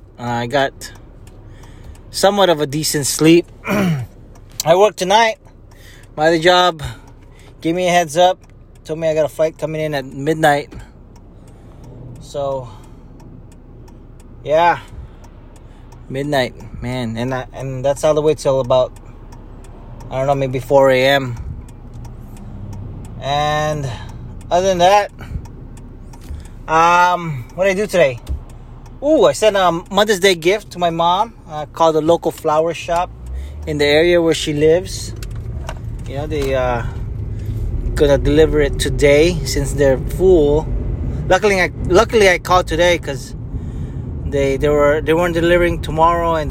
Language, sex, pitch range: English, male, 120-160 Hz